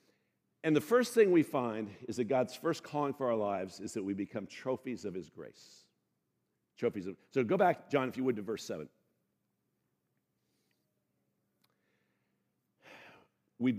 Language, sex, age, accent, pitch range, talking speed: English, male, 50-69, American, 95-155 Hz, 150 wpm